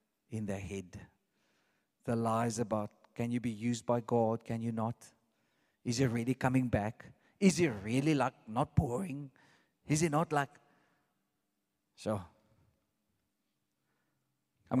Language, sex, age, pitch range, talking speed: English, male, 40-59, 115-145 Hz, 130 wpm